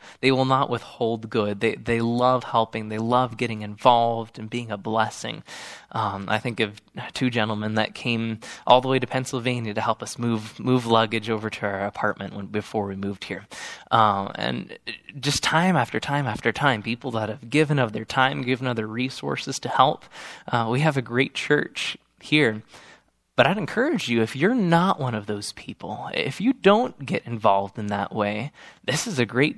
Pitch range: 110-140 Hz